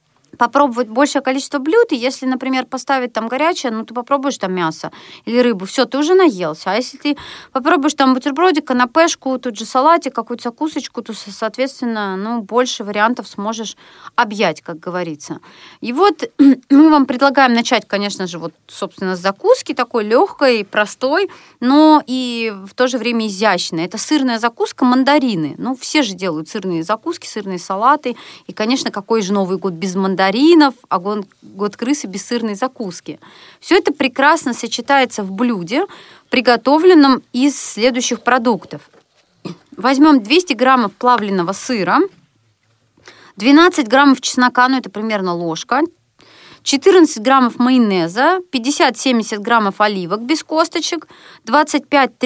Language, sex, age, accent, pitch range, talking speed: Russian, female, 30-49, native, 210-280 Hz, 140 wpm